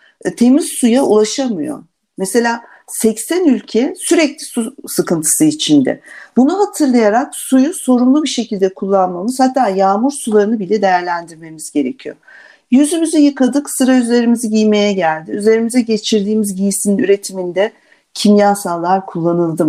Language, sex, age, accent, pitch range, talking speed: Turkish, female, 50-69, native, 190-260 Hz, 105 wpm